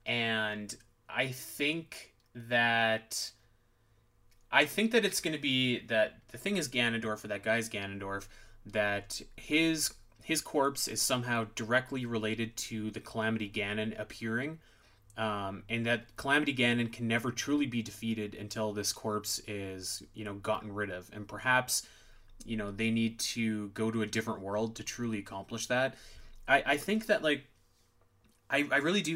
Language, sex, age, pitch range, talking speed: English, male, 20-39, 105-120 Hz, 155 wpm